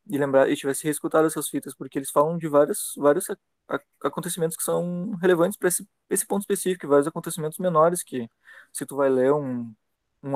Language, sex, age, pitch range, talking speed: Portuguese, male, 20-39, 130-155 Hz, 195 wpm